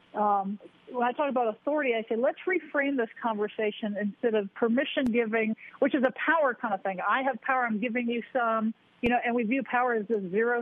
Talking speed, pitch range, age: 230 wpm, 210-250 Hz, 50-69